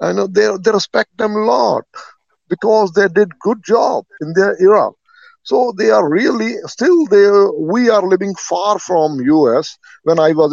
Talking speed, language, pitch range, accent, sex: 175 wpm, English, 160-225 Hz, Indian, male